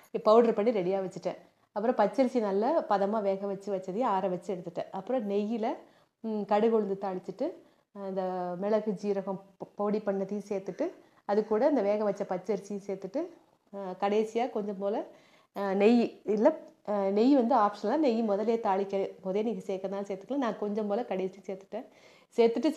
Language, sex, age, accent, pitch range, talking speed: Tamil, female, 30-49, native, 195-245 Hz, 135 wpm